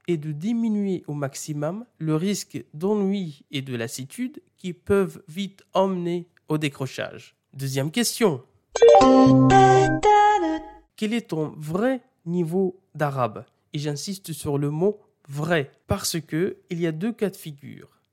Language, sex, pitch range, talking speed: French, male, 140-190 Hz, 135 wpm